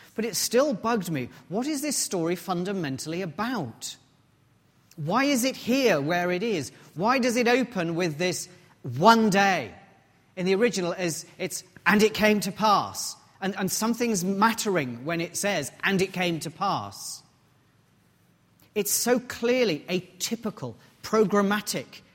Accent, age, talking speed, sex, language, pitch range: British, 40-59, 145 wpm, male, English, 155-210 Hz